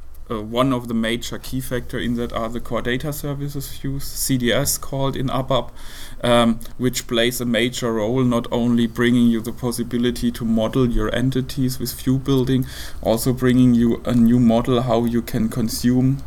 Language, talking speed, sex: Dutch, 175 wpm, male